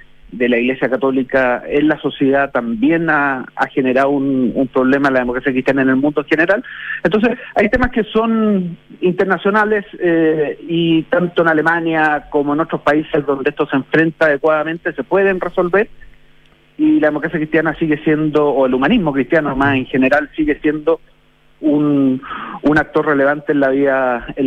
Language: Spanish